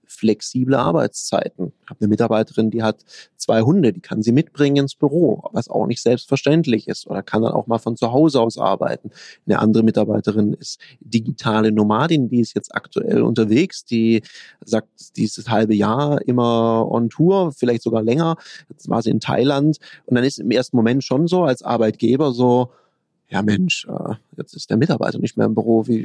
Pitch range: 110-135 Hz